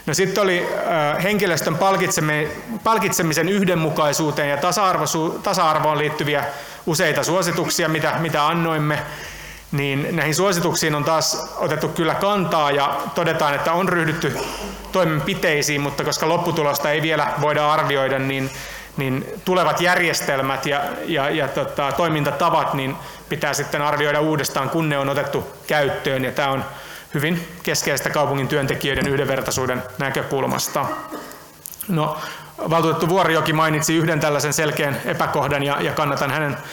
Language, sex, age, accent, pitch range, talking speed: Finnish, male, 30-49, native, 145-165 Hz, 120 wpm